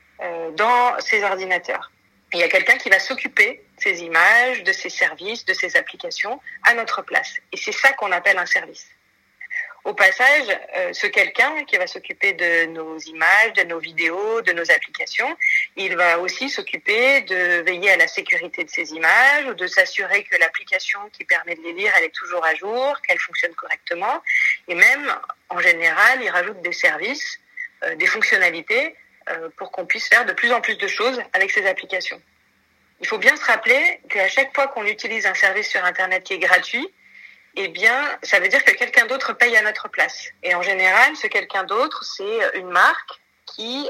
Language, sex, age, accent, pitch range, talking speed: French, female, 40-59, French, 185-300 Hz, 190 wpm